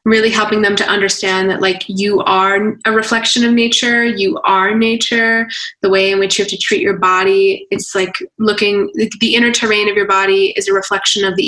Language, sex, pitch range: English, female, 200-235 Hz